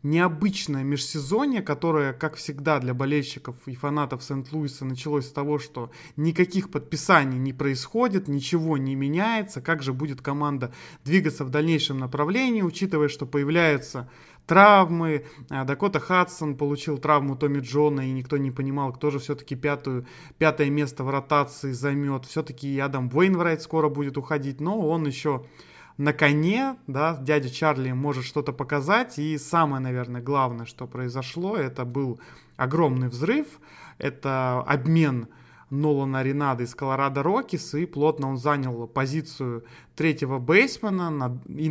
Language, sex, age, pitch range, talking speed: Russian, male, 20-39, 135-155 Hz, 135 wpm